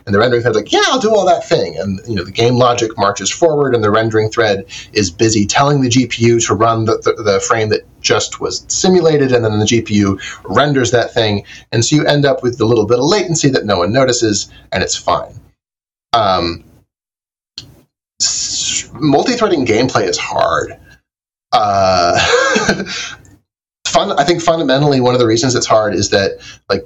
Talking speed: 185 wpm